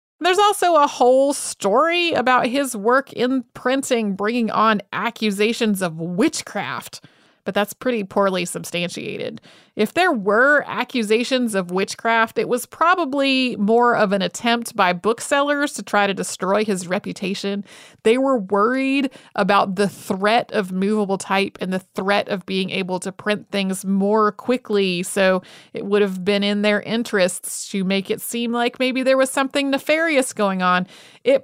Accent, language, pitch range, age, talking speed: American, English, 195-250 Hz, 30-49, 155 wpm